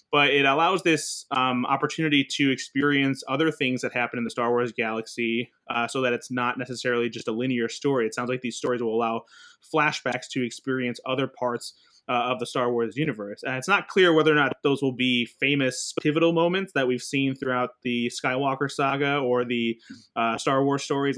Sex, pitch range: male, 120-145 Hz